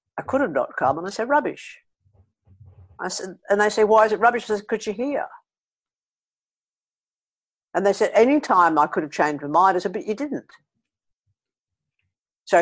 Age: 60-79